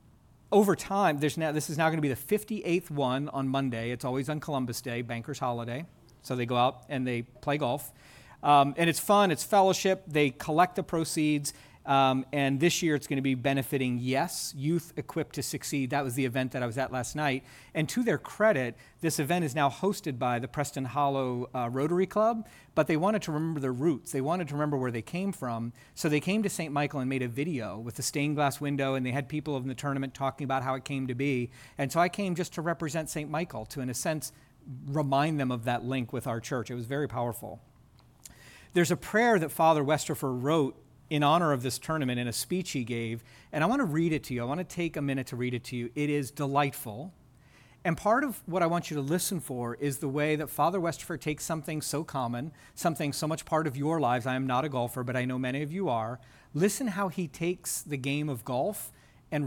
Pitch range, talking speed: 130-160 Hz, 235 wpm